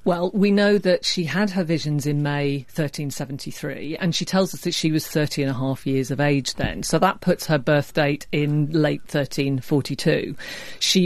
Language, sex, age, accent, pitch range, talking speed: English, female, 40-59, British, 150-185 Hz, 195 wpm